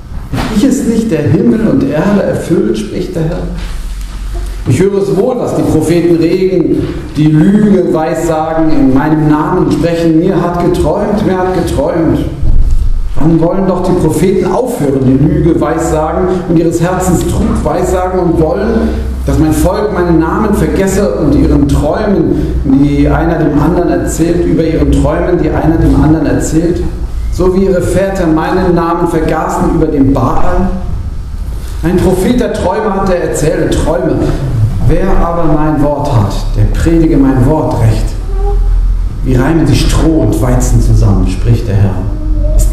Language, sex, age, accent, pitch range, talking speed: German, male, 40-59, German, 110-170 Hz, 155 wpm